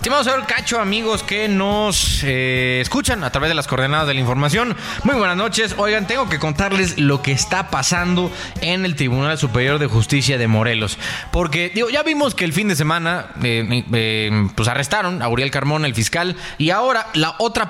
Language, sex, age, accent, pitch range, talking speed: Spanish, male, 20-39, Mexican, 140-200 Hz, 205 wpm